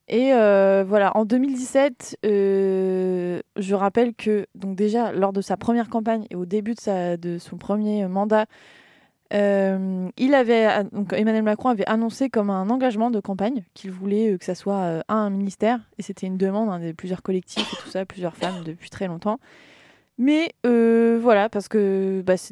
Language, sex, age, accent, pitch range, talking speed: French, female, 20-39, French, 195-245 Hz, 180 wpm